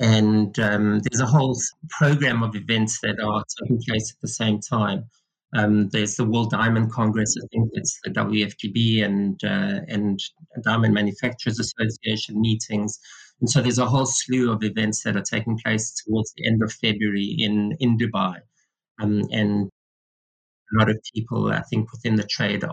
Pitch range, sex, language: 105-125 Hz, male, English